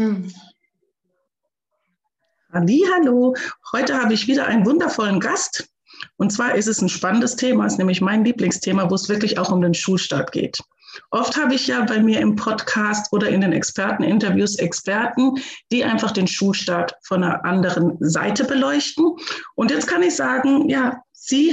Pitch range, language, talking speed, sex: 195-255 Hz, German, 155 wpm, female